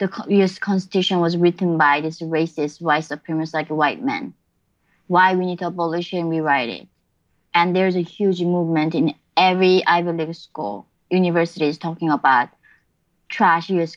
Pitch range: 170-205 Hz